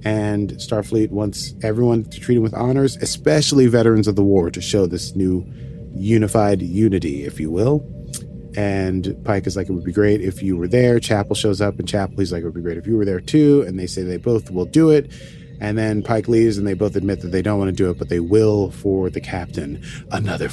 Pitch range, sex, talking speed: 105-140 Hz, male, 235 wpm